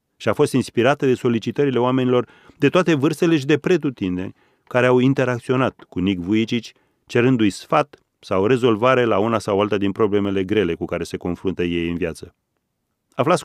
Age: 30-49